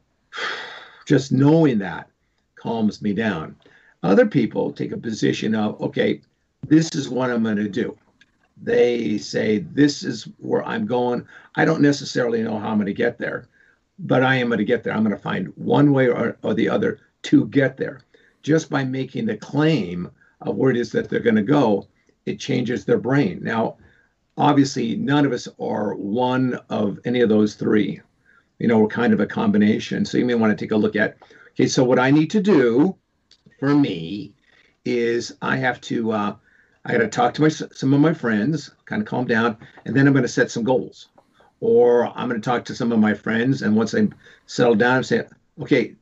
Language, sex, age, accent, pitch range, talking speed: English, male, 50-69, American, 115-160 Hz, 195 wpm